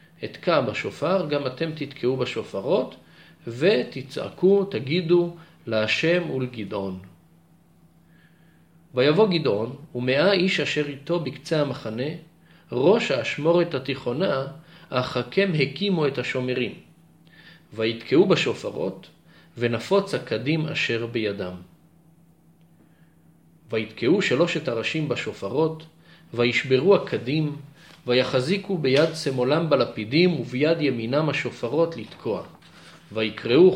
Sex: male